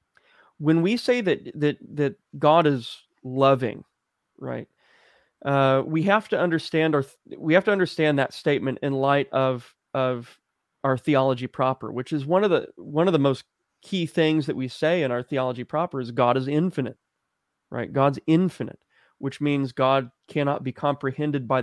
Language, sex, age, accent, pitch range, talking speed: English, male, 30-49, American, 130-150 Hz, 170 wpm